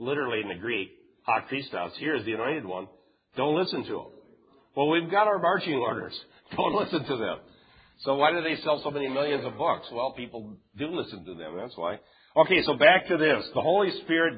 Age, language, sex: 50-69, English, male